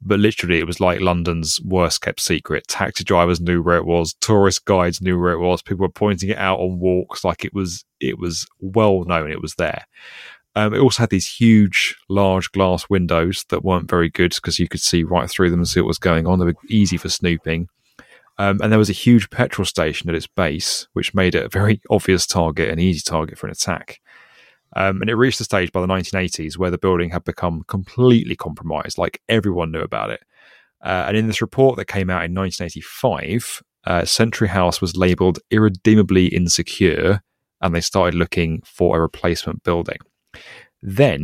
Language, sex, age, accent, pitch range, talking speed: English, male, 30-49, British, 85-100 Hz, 200 wpm